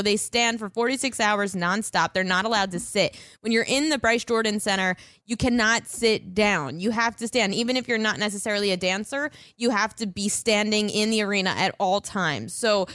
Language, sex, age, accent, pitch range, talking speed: English, female, 20-39, American, 200-250 Hz, 210 wpm